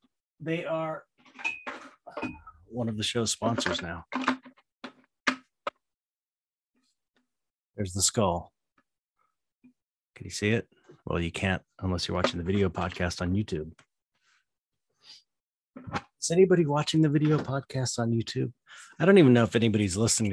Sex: male